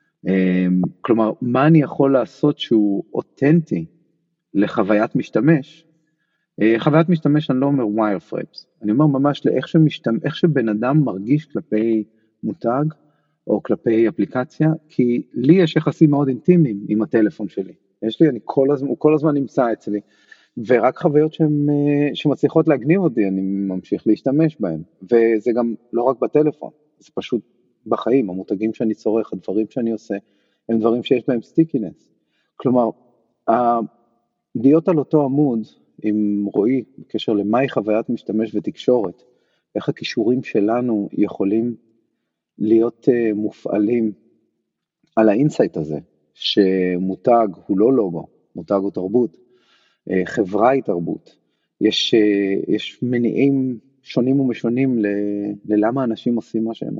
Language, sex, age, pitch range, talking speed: Hebrew, male, 40-59, 110-150 Hz, 135 wpm